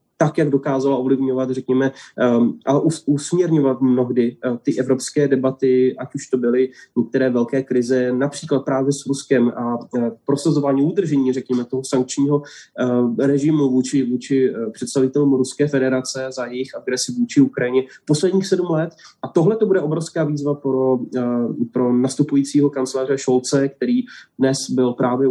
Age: 20-39